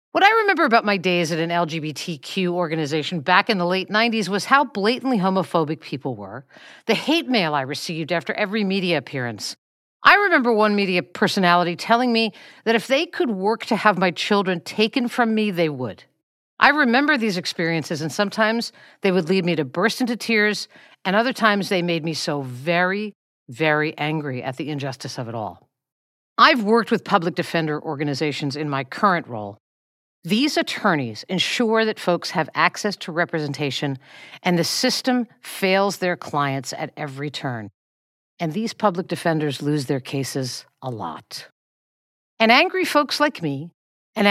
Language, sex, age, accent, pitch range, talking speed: English, female, 50-69, American, 155-225 Hz, 170 wpm